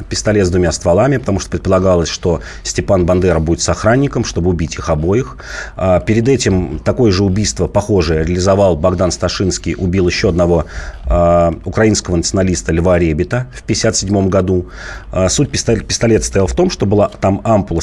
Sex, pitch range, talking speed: male, 85-105 Hz, 150 wpm